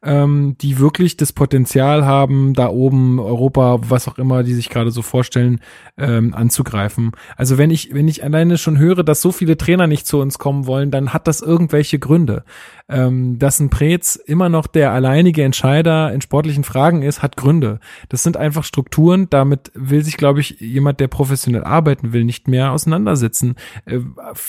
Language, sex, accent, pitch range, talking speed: German, male, German, 130-155 Hz, 180 wpm